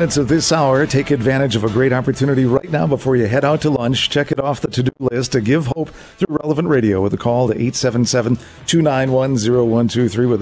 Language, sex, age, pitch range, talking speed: English, male, 50-69, 110-140 Hz, 205 wpm